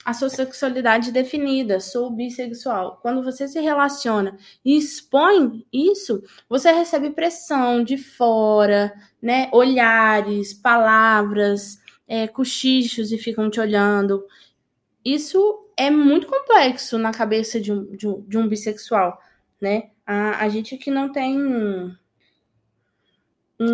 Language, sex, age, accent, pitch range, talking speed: Portuguese, female, 10-29, Brazilian, 215-285 Hz, 110 wpm